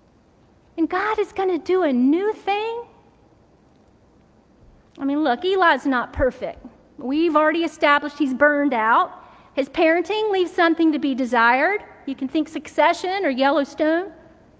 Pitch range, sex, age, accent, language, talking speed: 295-390 Hz, female, 40-59, American, English, 140 wpm